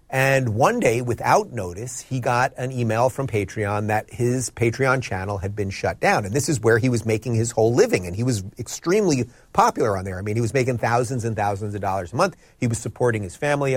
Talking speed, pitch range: 230 wpm, 110-160 Hz